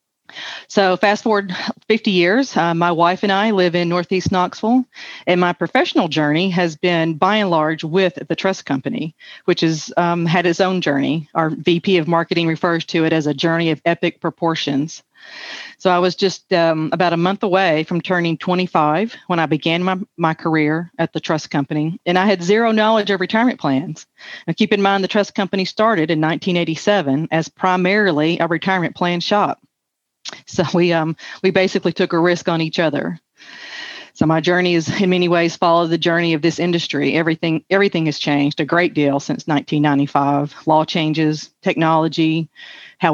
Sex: female